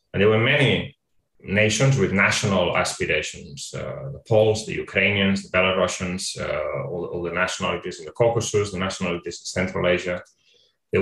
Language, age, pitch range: English, 30-49, 90-115 Hz